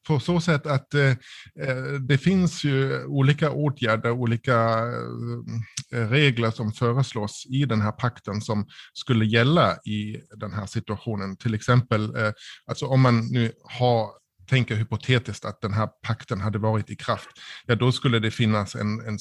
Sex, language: male, English